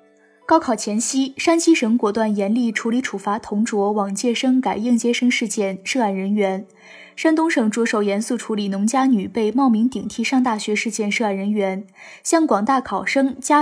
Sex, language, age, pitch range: female, Chinese, 20-39, 205-265 Hz